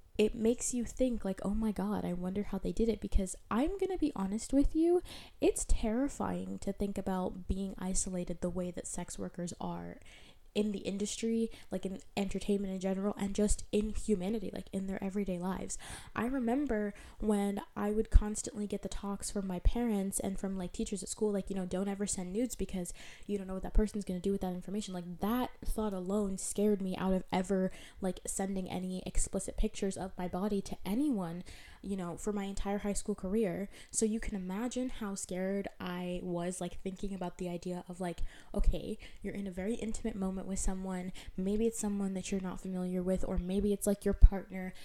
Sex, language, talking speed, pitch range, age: female, English, 205 wpm, 185-210 Hz, 10-29